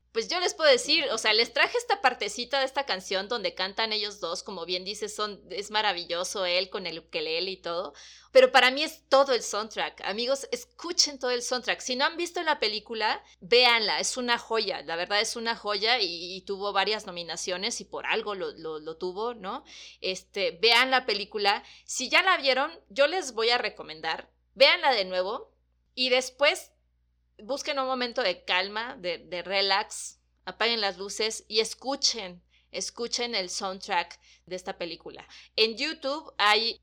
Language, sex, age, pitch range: Spanish, female, 30-49, 185-260 Hz